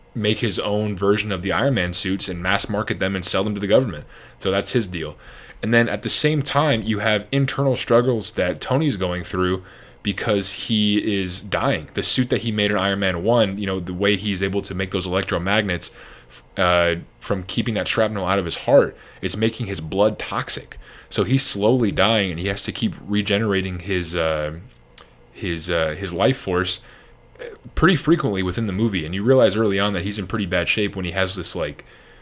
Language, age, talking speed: English, 20-39, 210 wpm